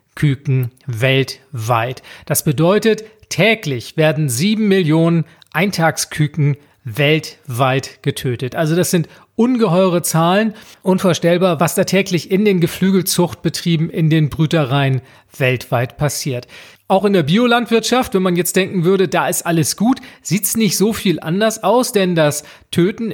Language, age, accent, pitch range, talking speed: German, 40-59, German, 155-200 Hz, 130 wpm